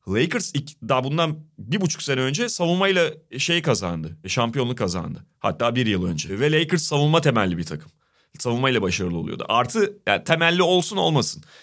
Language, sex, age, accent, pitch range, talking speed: Turkish, male, 30-49, native, 120-170 Hz, 160 wpm